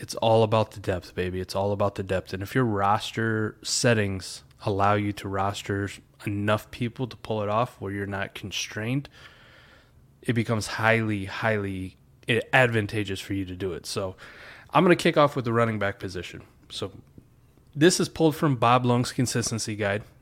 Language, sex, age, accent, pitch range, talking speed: English, male, 20-39, American, 100-125 Hz, 175 wpm